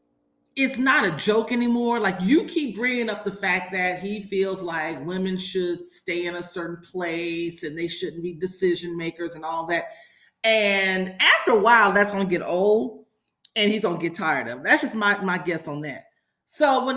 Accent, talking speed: American, 205 wpm